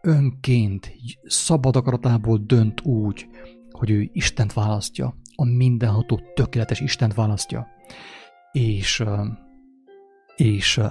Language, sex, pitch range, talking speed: English, male, 105-130 Hz, 85 wpm